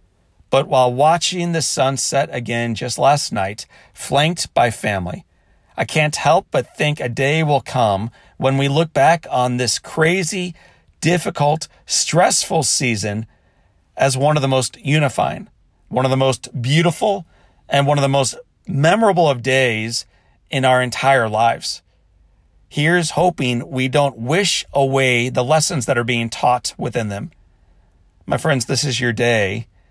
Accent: American